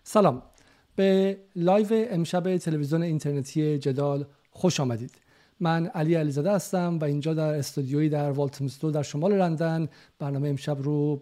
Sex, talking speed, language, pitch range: male, 140 wpm, Persian, 145-175 Hz